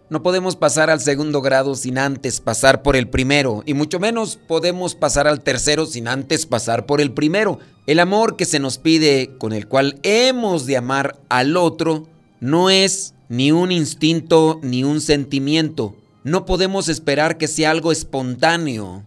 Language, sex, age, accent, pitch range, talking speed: Spanish, male, 40-59, Mexican, 135-175 Hz, 170 wpm